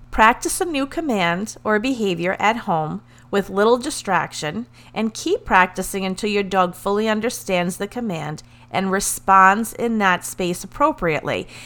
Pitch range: 170-215 Hz